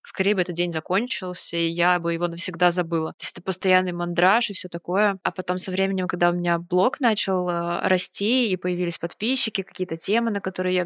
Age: 20-39